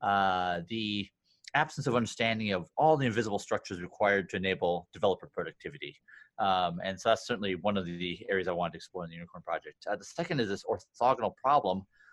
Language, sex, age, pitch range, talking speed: English, male, 30-49, 95-115 Hz, 200 wpm